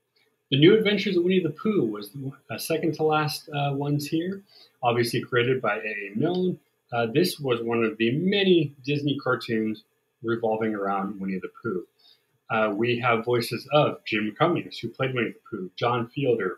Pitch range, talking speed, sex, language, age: 115-155 Hz, 165 wpm, male, English, 30-49